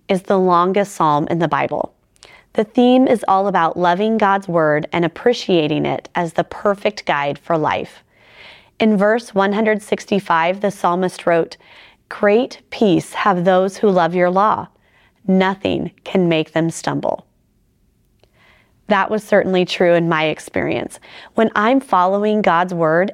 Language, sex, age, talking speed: English, female, 30-49, 145 wpm